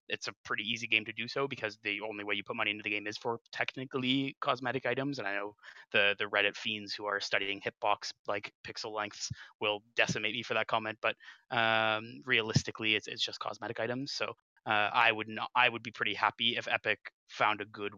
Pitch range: 105-120 Hz